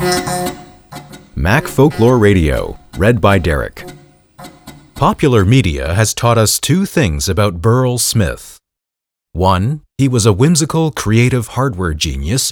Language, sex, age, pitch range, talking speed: English, male, 30-49, 90-135 Hz, 115 wpm